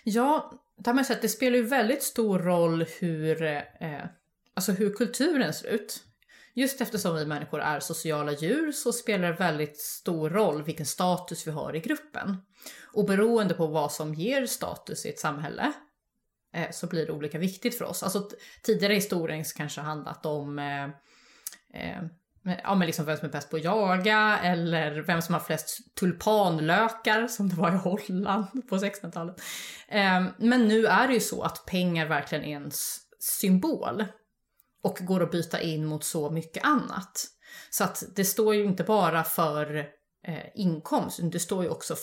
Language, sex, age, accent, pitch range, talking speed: Swedish, female, 30-49, native, 160-215 Hz, 170 wpm